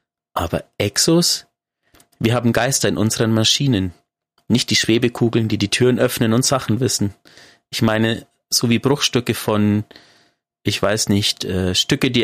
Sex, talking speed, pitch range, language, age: male, 140 wpm, 100-125 Hz, German, 30-49